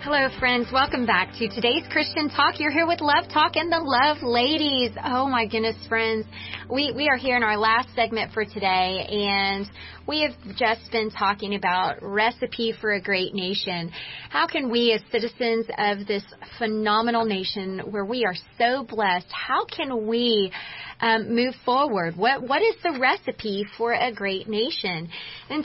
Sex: female